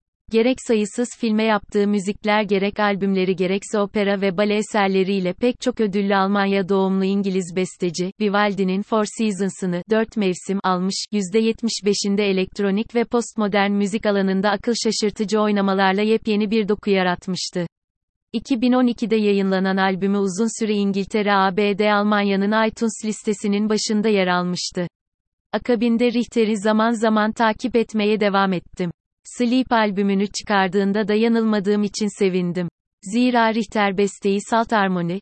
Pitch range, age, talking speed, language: 190-220 Hz, 30-49, 120 wpm, Turkish